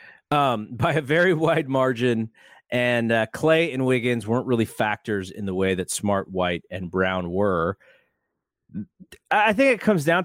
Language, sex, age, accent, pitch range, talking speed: English, male, 30-49, American, 110-160 Hz, 165 wpm